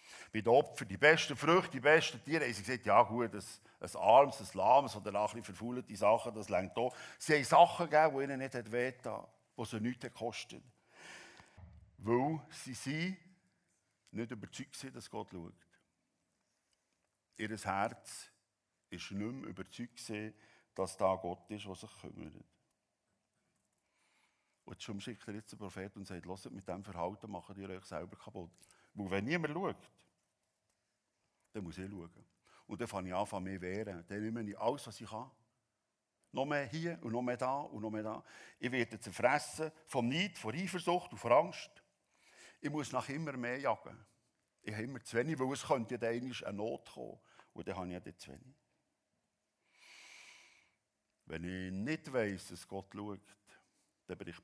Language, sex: German, male